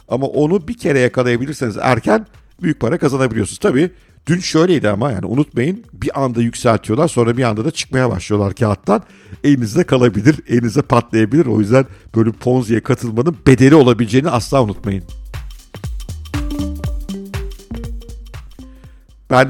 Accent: native